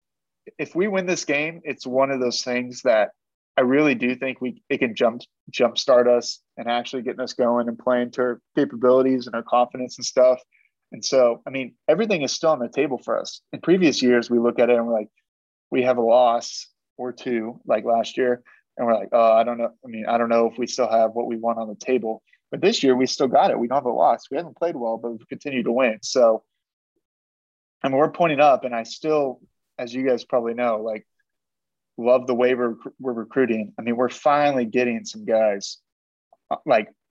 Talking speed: 230 wpm